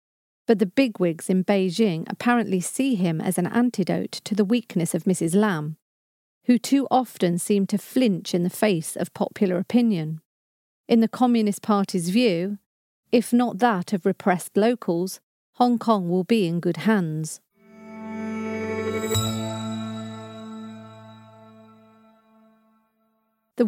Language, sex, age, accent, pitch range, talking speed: English, female, 40-59, British, 180-245 Hz, 120 wpm